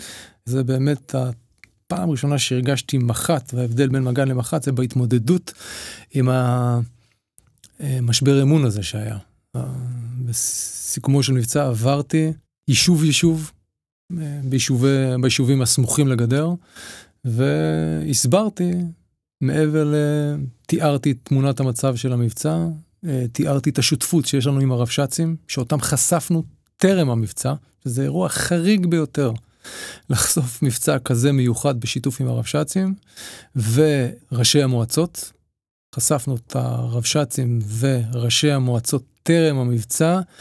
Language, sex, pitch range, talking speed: Hebrew, male, 125-155 Hz, 95 wpm